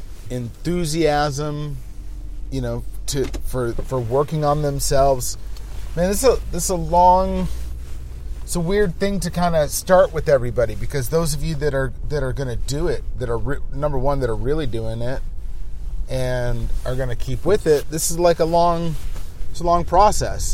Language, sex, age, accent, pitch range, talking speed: English, male, 30-49, American, 95-145 Hz, 185 wpm